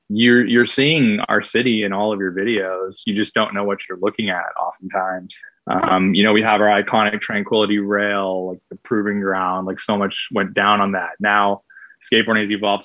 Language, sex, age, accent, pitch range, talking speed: English, male, 20-39, American, 100-110 Hz, 200 wpm